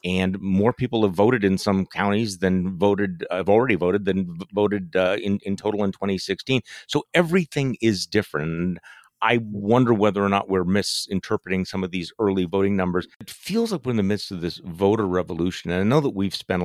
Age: 40-59